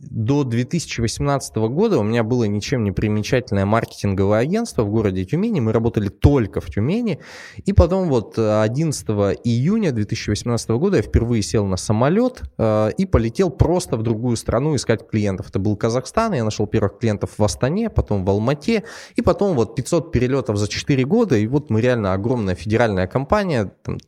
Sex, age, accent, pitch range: male, 20-39, native, 100-135 Hz